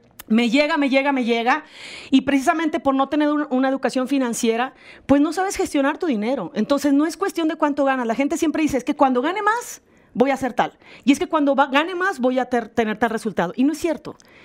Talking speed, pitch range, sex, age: 235 wpm, 210-280 Hz, female, 40-59